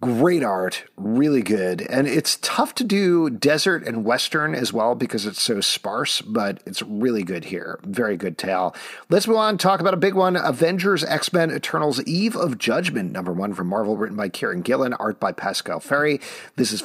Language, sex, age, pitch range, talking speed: English, male, 40-59, 110-160 Hz, 195 wpm